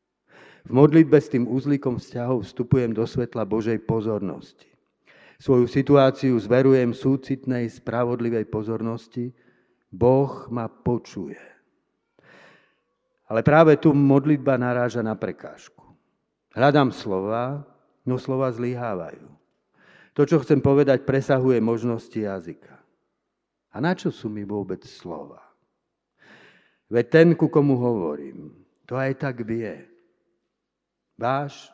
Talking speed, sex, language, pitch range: 105 wpm, male, Slovak, 115-135 Hz